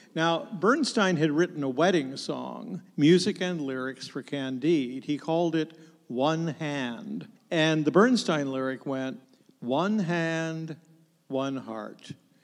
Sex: male